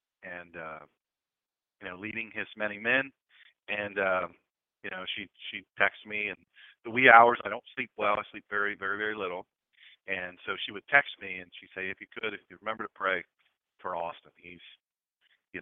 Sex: male